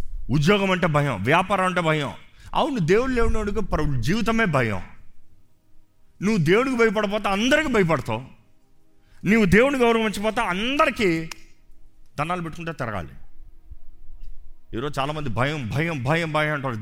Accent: native